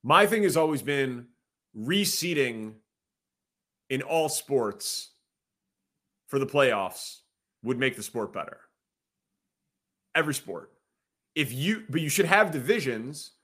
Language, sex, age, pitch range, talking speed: English, male, 30-49, 130-160 Hz, 115 wpm